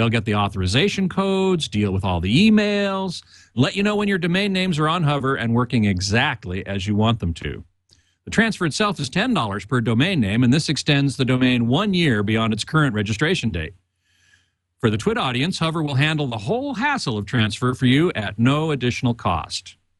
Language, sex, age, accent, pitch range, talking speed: English, male, 50-69, American, 105-155 Hz, 200 wpm